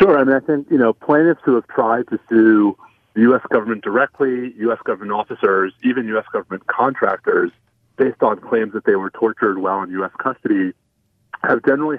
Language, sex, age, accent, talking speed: English, male, 30-49, American, 185 wpm